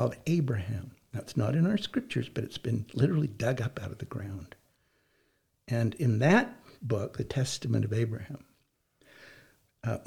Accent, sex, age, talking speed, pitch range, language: American, male, 60-79, 155 wpm, 120-160 Hz, English